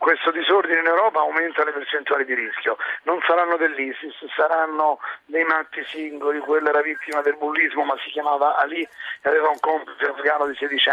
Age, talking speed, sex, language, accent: 40-59, 175 wpm, male, Italian, native